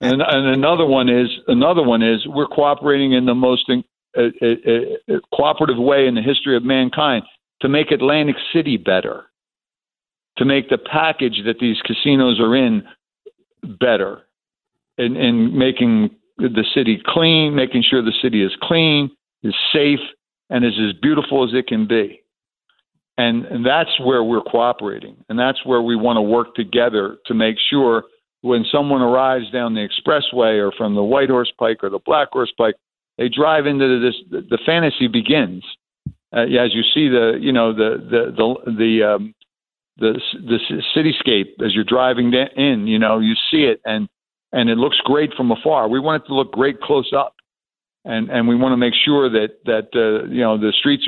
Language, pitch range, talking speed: English, 115-145 Hz, 185 wpm